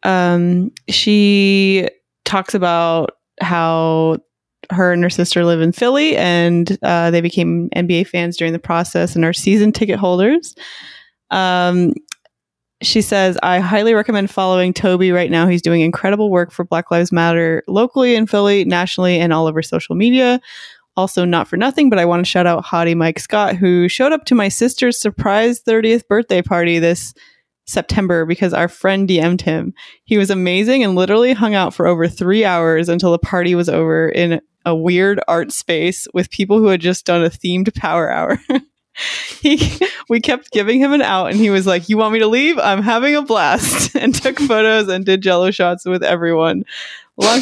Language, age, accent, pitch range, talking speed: English, 20-39, American, 170-215 Hz, 180 wpm